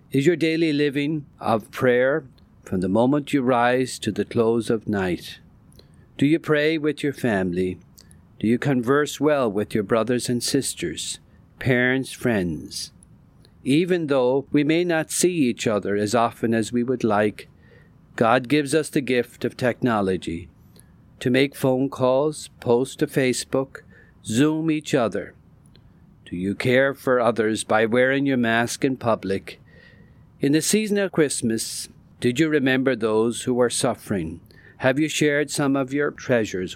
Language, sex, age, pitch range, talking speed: English, male, 50-69, 110-140 Hz, 155 wpm